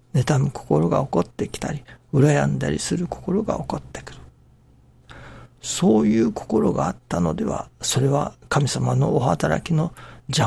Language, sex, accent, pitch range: Japanese, male, native, 125-145 Hz